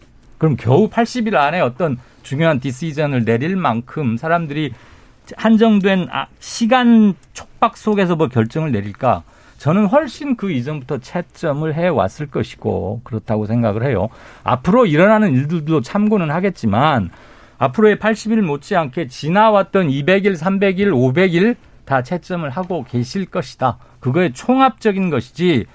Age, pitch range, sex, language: 50-69, 125-185 Hz, male, Korean